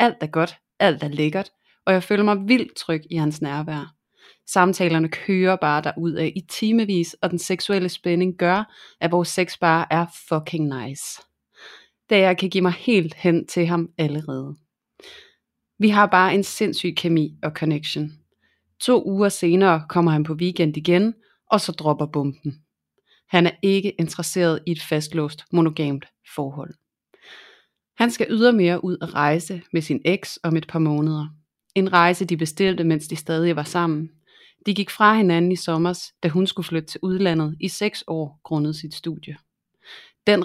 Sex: female